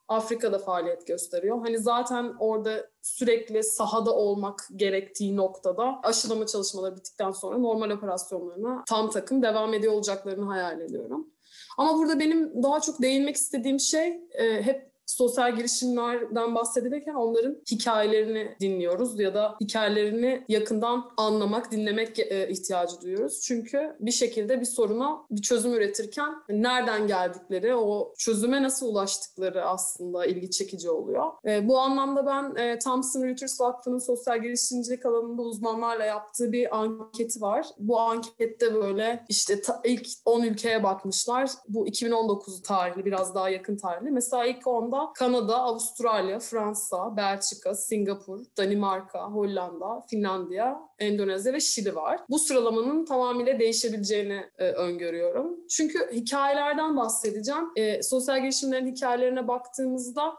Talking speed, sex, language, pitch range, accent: 120 wpm, female, Turkish, 205-255 Hz, native